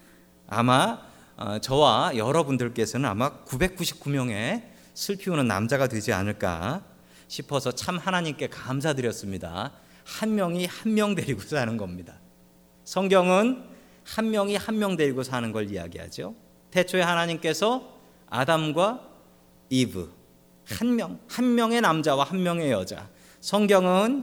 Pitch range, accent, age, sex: 105-170 Hz, native, 40-59, male